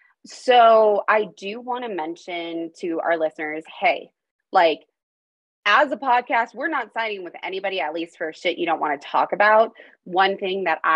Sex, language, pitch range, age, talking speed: female, English, 155-215 Hz, 20-39, 175 wpm